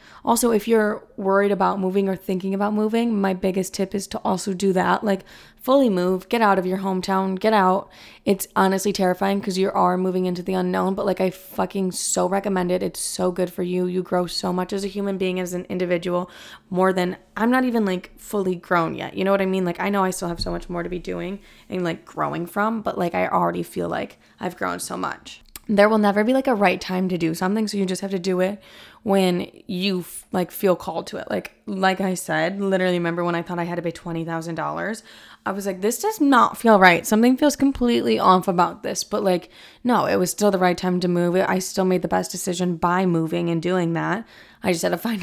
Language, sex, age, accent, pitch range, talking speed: English, female, 20-39, American, 180-200 Hz, 240 wpm